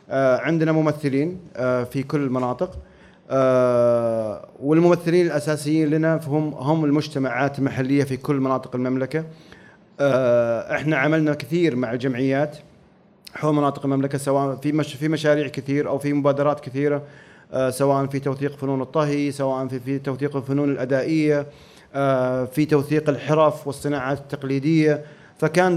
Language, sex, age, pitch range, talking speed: Arabic, male, 30-49, 135-155 Hz, 140 wpm